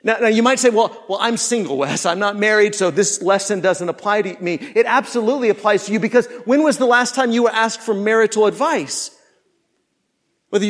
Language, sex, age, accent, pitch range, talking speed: English, male, 40-59, American, 215-290 Hz, 215 wpm